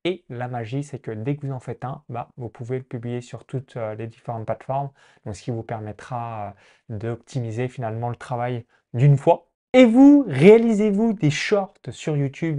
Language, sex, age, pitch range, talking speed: French, male, 20-39, 120-155 Hz, 185 wpm